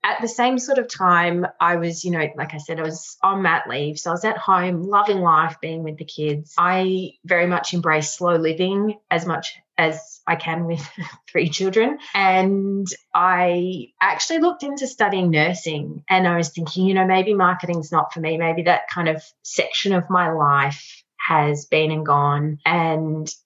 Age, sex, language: 20-39, female, English